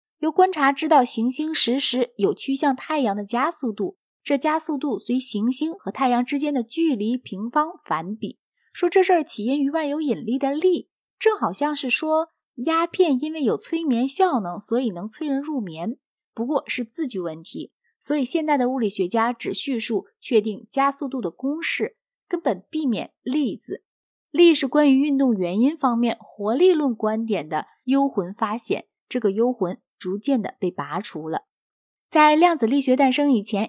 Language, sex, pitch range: Chinese, female, 230-310 Hz